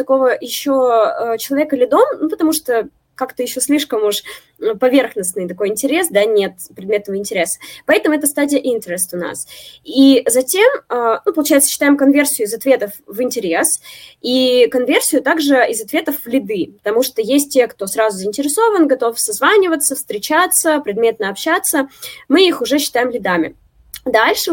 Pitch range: 215-290 Hz